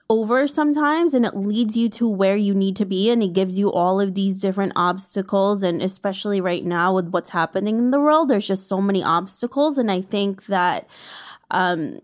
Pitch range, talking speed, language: 185-220 Hz, 205 wpm, English